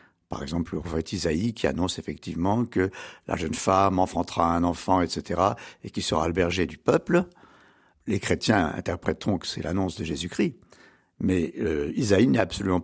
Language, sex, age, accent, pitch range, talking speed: French, male, 60-79, French, 85-110 Hz, 170 wpm